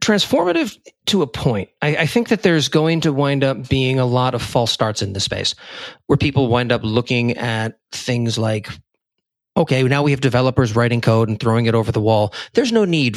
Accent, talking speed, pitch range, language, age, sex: American, 210 wpm, 110-135 Hz, English, 40-59, male